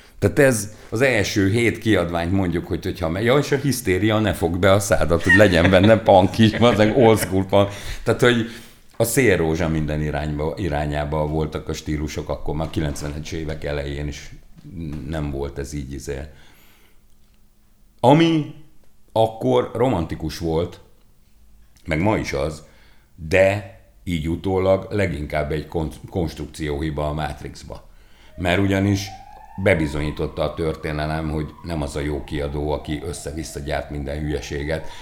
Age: 50-69